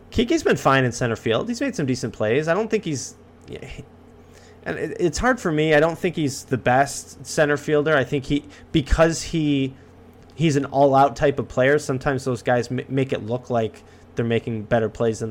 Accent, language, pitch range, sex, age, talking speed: American, English, 115-145 Hz, male, 20-39, 215 wpm